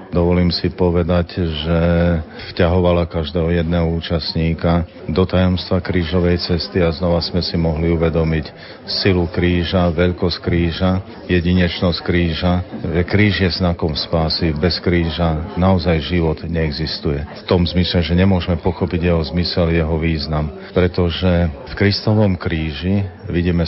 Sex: male